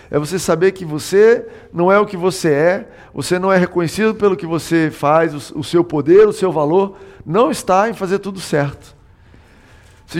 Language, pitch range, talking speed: Portuguese, 125-175 Hz, 190 wpm